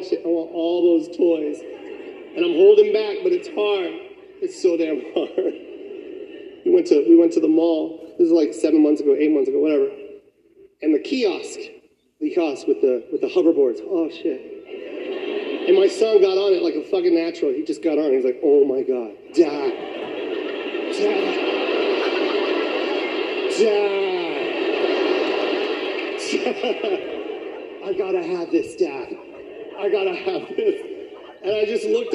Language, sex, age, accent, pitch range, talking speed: English, male, 40-59, American, 370-405 Hz, 160 wpm